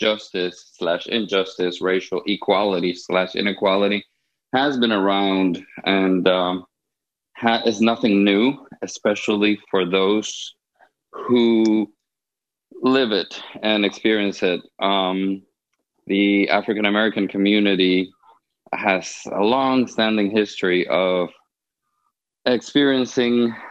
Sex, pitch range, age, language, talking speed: male, 95-110 Hz, 20-39, English, 90 wpm